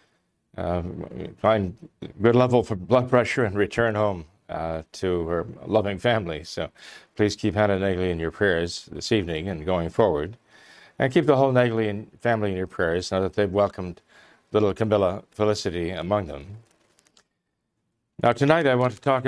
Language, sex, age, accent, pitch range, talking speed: English, male, 40-59, American, 95-120 Hz, 165 wpm